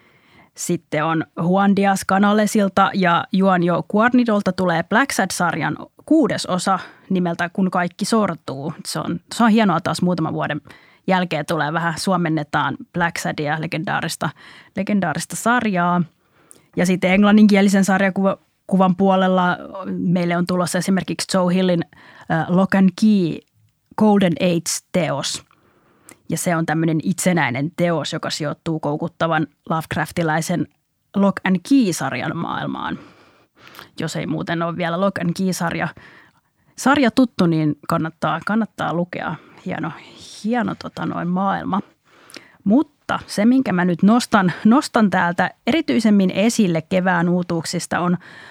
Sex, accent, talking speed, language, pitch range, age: female, native, 115 wpm, Finnish, 170-200 Hz, 20-39